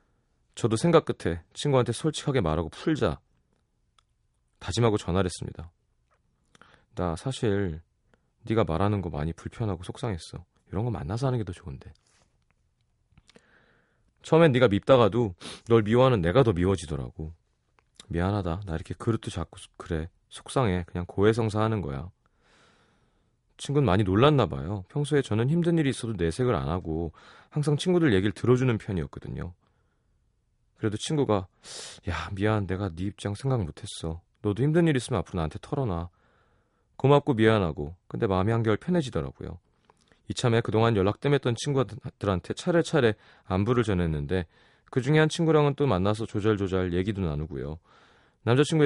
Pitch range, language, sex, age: 90-125 Hz, Korean, male, 30-49